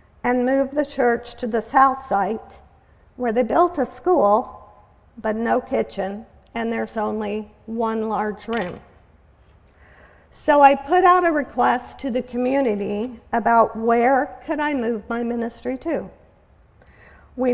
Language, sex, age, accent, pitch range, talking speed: English, female, 50-69, American, 225-280 Hz, 135 wpm